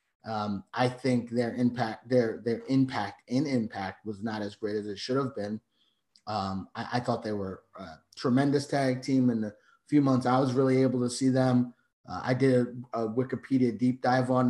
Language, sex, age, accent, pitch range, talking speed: English, male, 30-49, American, 110-130 Hz, 205 wpm